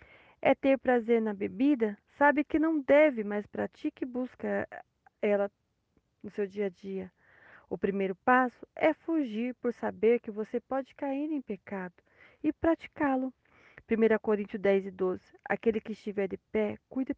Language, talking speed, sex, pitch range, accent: Portuguese, 155 wpm, female, 200-285 Hz, Brazilian